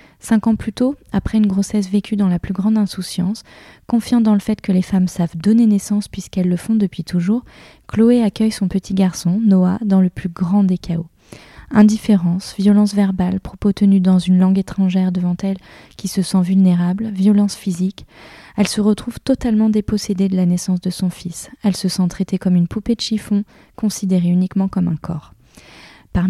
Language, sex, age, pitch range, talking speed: French, female, 20-39, 185-210 Hz, 190 wpm